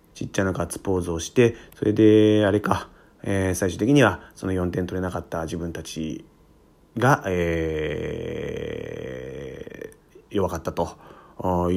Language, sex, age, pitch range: Japanese, male, 30-49, 80-100 Hz